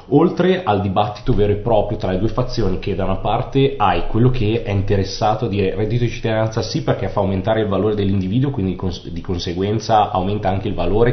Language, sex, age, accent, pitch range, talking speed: Italian, male, 30-49, native, 95-120 Hz, 205 wpm